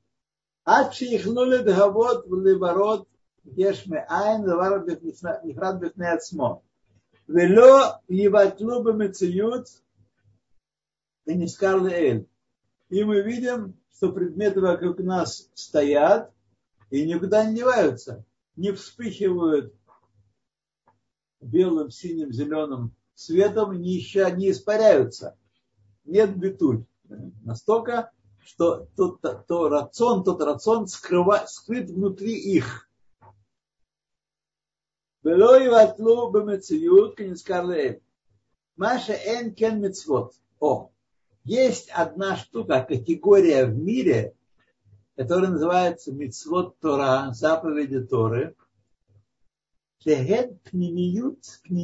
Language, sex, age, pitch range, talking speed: Russian, male, 60-79, 150-215 Hz, 85 wpm